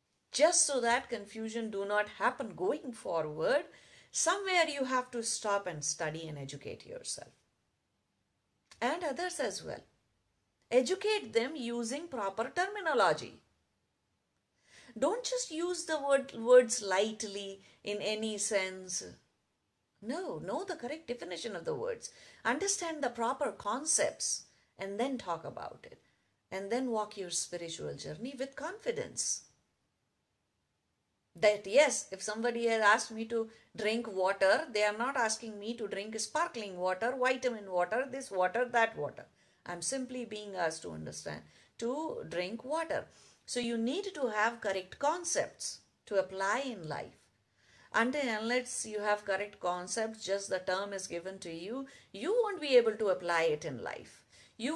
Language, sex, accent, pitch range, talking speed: English, female, Indian, 195-265 Hz, 145 wpm